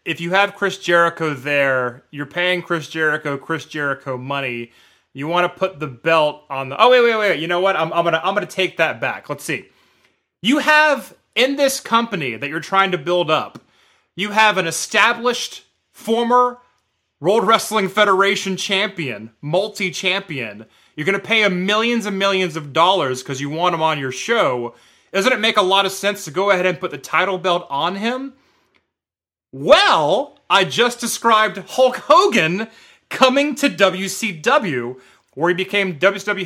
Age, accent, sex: 30-49, American, male